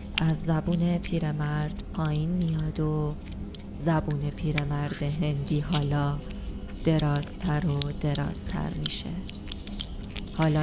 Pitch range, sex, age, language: 150-170 Hz, female, 20-39, Persian